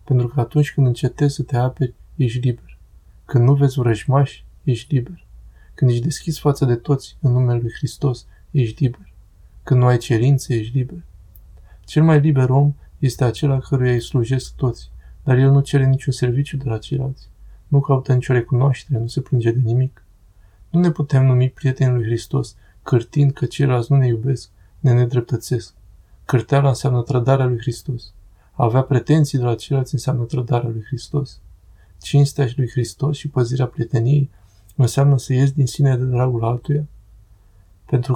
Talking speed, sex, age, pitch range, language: 170 wpm, male, 20-39, 115-135 Hz, Romanian